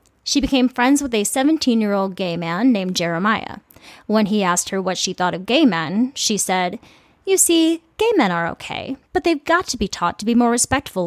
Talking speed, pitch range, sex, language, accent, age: 205 wpm, 180-245 Hz, female, English, American, 20-39